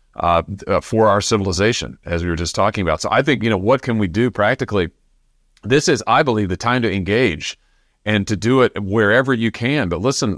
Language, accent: English, American